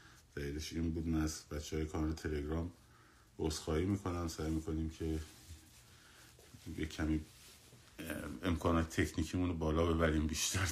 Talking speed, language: 105 wpm, Persian